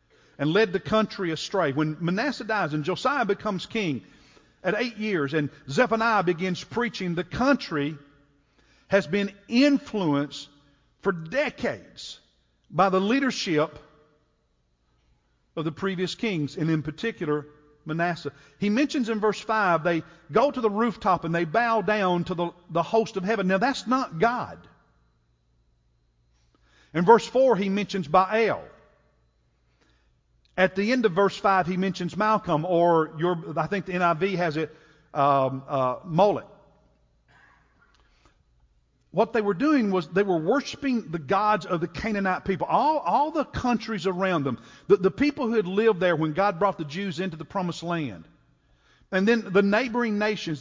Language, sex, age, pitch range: English, male, 50-69, 150-215 Hz